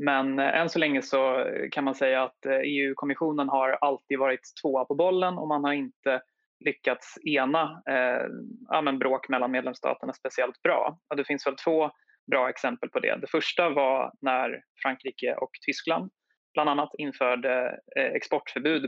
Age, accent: 20-39, native